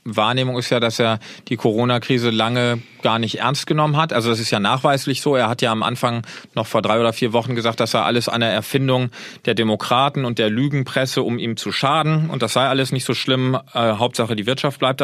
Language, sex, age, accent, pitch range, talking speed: German, male, 40-59, German, 120-145 Hz, 225 wpm